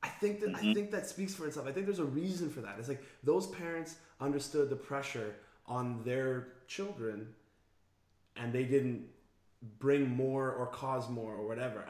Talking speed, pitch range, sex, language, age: 180 wpm, 115-145 Hz, male, English, 20-39